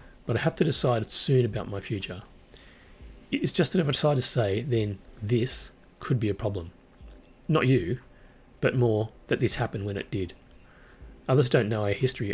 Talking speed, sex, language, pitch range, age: 185 wpm, male, English, 95-125 Hz, 30-49